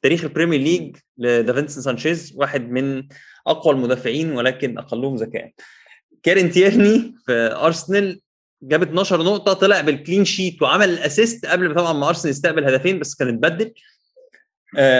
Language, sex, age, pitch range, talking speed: Arabic, male, 20-39, 135-180 Hz, 130 wpm